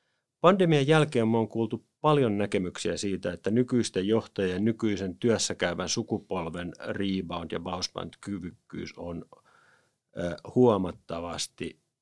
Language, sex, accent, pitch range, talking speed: Finnish, male, native, 90-115 Hz, 95 wpm